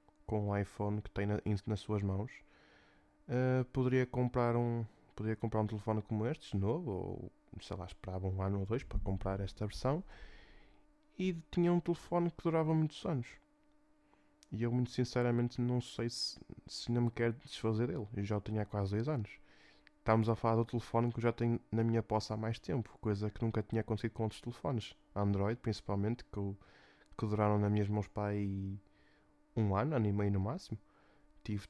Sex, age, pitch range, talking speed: male, 20-39, 100-130 Hz, 195 wpm